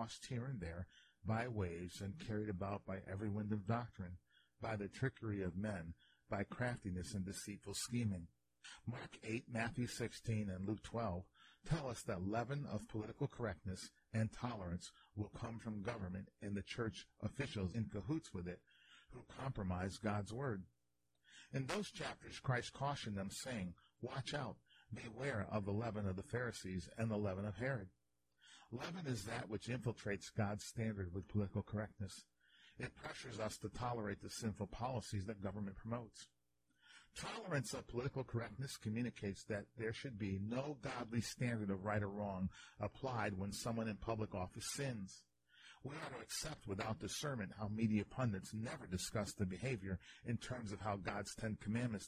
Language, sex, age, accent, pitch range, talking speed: English, male, 50-69, American, 95-120 Hz, 160 wpm